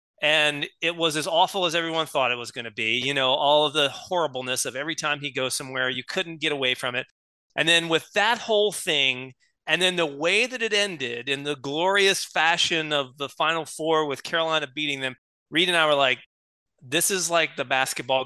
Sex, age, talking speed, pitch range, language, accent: male, 30-49, 215 wpm, 130-165 Hz, English, American